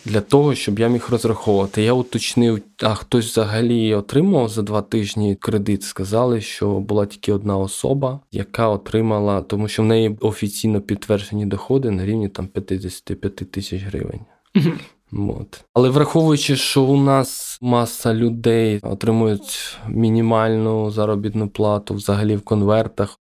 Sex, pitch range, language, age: male, 105-120 Hz, Ukrainian, 20-39